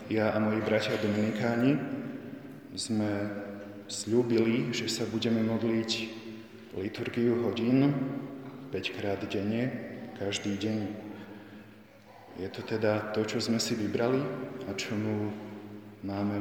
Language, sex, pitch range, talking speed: Slovak, male, 105-115 Hz, 105 wpm